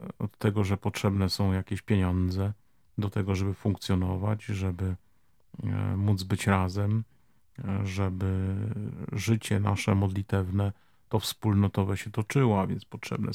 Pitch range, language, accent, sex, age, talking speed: 95-110 Hz, Polish, native, male, 40-59, 115 wpm